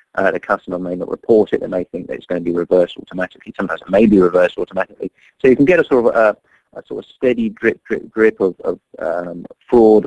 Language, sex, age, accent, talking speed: English, male, 30-49, British, 255 wpm